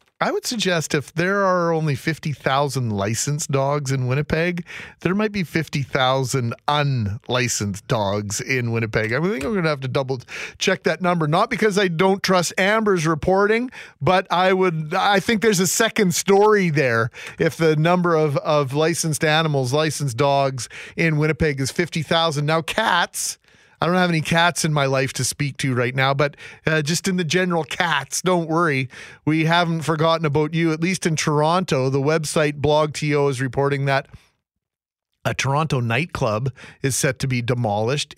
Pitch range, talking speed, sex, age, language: 130-175 Hz, 170 wpm, male, 40-59, English